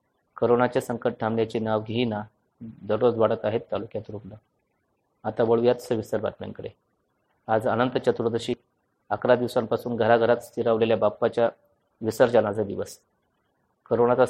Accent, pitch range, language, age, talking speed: native, 110-125 Hz, Marathi, 30-49, 90 wpm